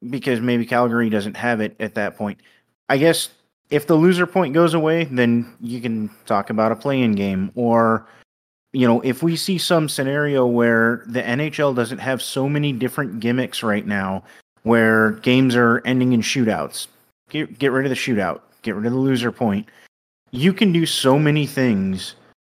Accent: American